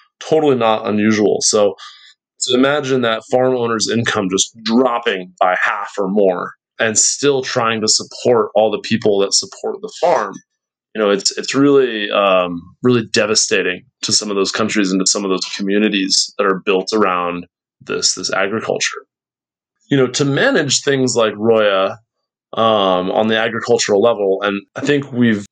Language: English